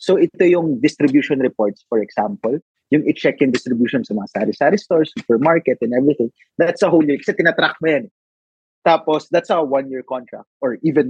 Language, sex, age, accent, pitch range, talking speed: Filipino, male, 30-49, native, 130-170 Hz, 170 wpm